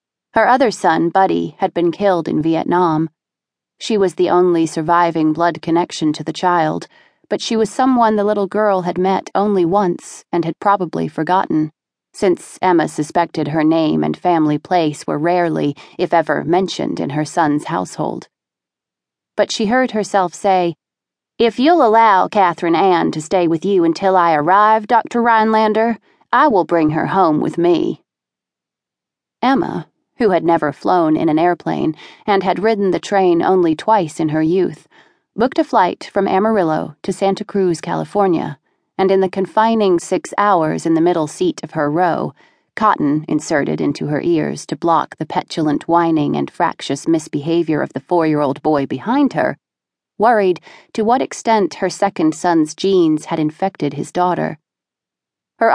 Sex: female